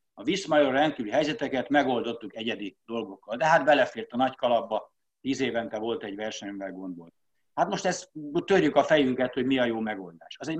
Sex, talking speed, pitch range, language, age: male, 180 wpm, 115-145 Hz, Hungarian, 60-79